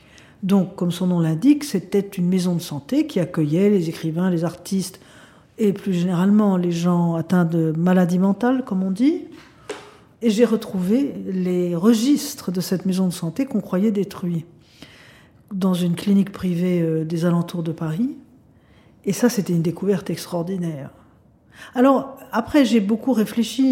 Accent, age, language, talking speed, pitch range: French, 50-69, French, 150 wpm, 175-225 Hz